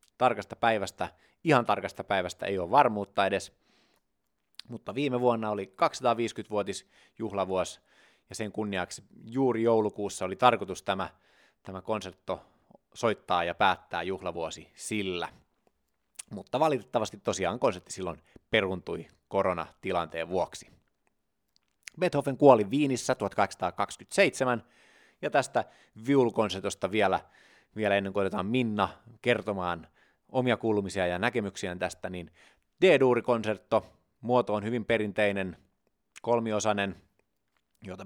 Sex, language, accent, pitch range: male, Finnish, native, 95-115 Hz